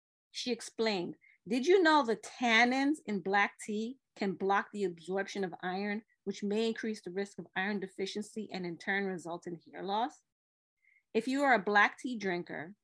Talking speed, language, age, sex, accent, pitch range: 180 wpm, English, 30-49, female, American, 185-240 Hz